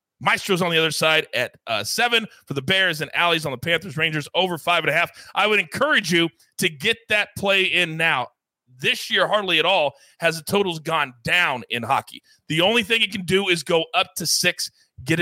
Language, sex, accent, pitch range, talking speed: English, male, American, 160-215 Hz, 220 wpm